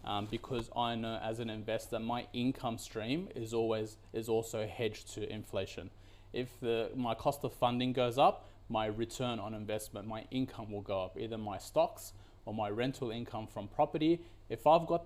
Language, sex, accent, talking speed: English, male, Australian, 185 wpm